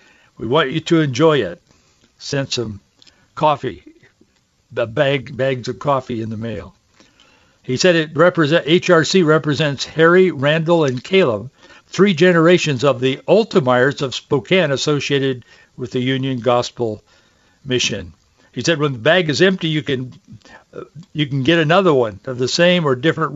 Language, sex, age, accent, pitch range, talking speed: English, male, 60-79, American, 125-160 Hz, 150 wpm